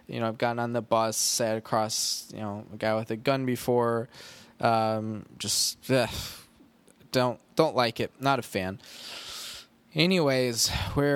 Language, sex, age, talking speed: English, male, 20-39, 155 wpm